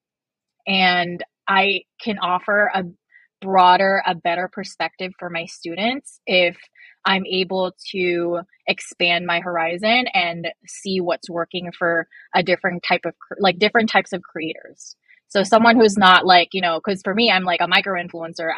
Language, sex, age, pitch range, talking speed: English, female, 20-39, 175-200 Hz, 150 wpm